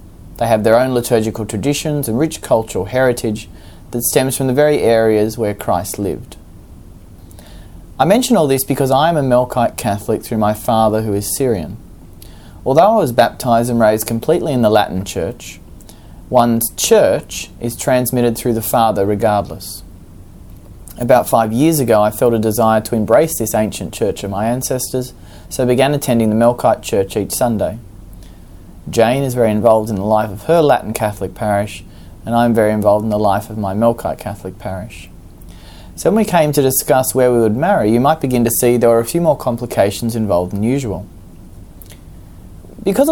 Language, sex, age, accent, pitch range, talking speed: English, male, 30-49, Australian, 95-125 Hz, 180 wpm